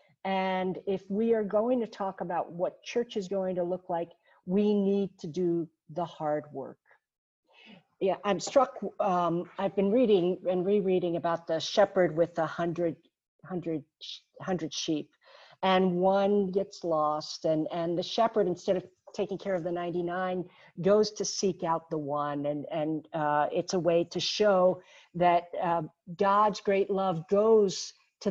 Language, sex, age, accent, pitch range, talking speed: English, female, 50-69, American, 170-200 Hz, 160 wpm